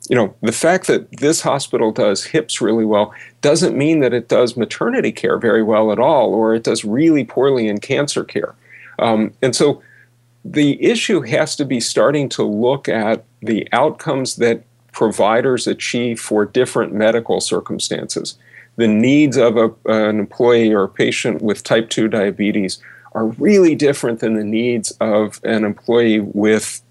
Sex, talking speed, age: male, 165 wpm, 40-59